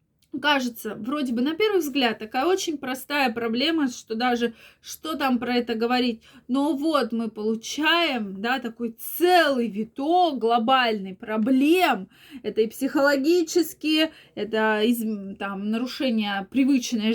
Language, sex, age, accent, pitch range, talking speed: Russian, female, 20-39, native, 220-275 Hz, 125 wpm